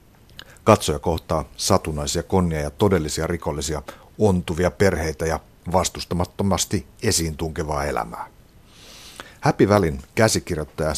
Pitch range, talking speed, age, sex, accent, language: 80-95 Hz, 85 wpm, 60-79, male, native, Finnish